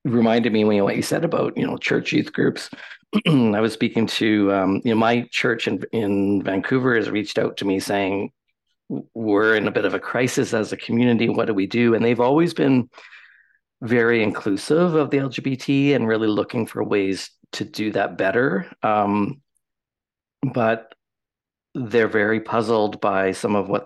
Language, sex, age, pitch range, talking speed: English, male, 50-69, 100-120 Hz, 180 wpm